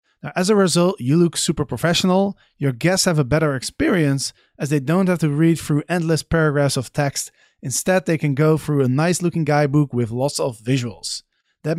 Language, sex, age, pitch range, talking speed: English, male, 30-49, 125-160 Hz, 195 wpm